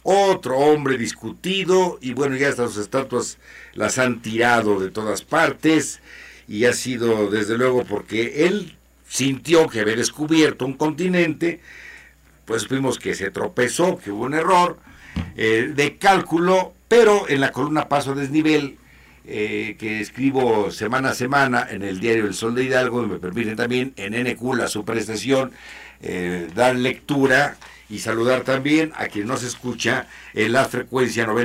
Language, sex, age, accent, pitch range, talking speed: Spanish, male, 60-79, Mexican, 115-155 Hz, 155 wpm